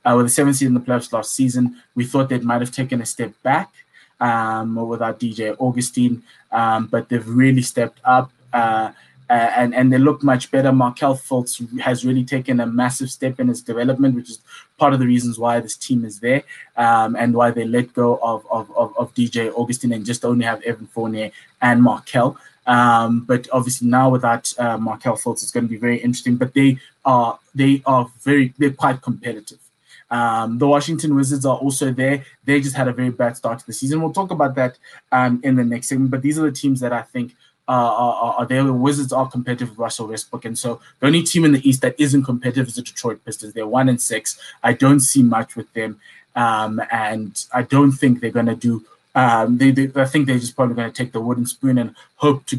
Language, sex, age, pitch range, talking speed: English, male, 20-39, 120-135 Hz, 225 wpm